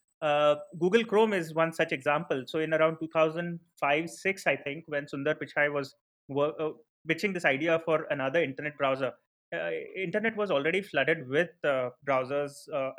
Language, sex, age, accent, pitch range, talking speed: English, male, 30-49, Indian, 145-170 Hz, 160 wpm